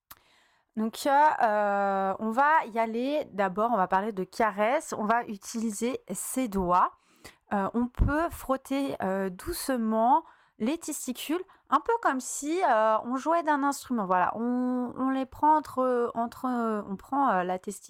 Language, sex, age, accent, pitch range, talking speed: French, female, 30-49, French, 205-280 Hz, 155 wpm